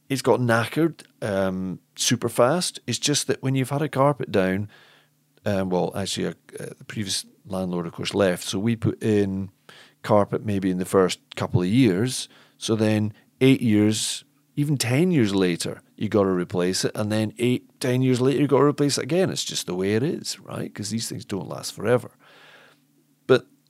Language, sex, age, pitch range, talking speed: English, male, 40-59, 95-130 Hz, 190 wpm